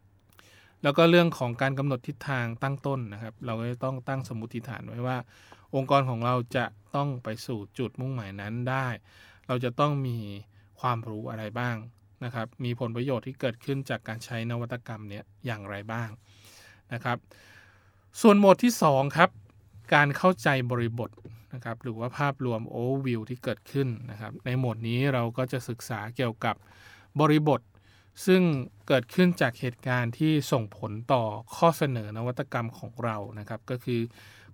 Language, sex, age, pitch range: Thai, male, 20-39, 110-135 Hz